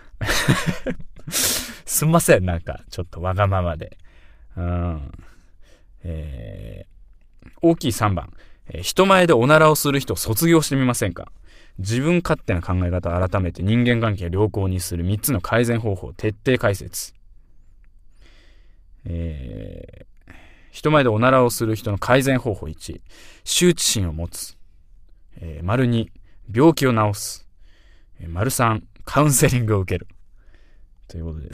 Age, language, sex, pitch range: 20-39, Japanese, male, 85-115 Hz